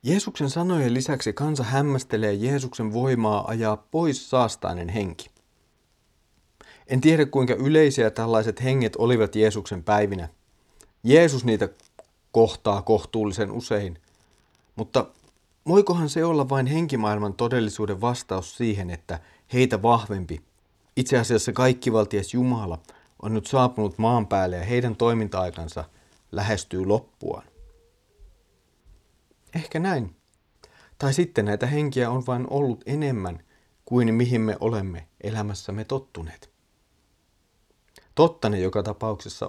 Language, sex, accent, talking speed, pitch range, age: Finnish, male, native, 110 wpm, 105-125 Hz, 40-59